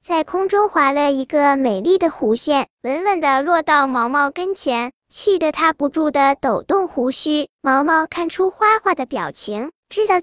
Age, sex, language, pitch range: 10-29, male, Chinese, 275-370 Hz